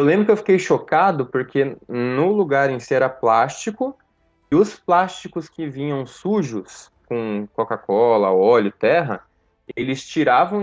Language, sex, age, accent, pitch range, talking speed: Portuguese, male, 20-39, Brazilian, 120-160 Hz, 140 wpm